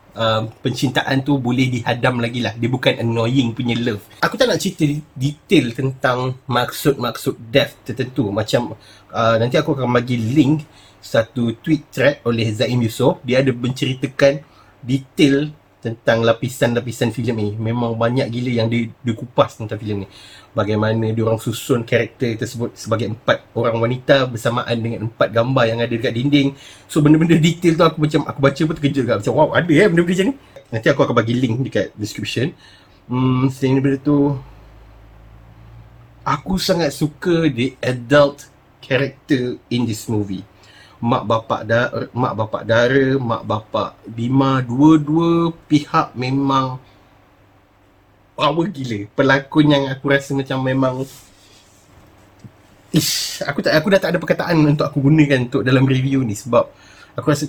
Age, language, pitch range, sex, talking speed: 30-49, Malay, 115-145 Hz, male, 150 wpm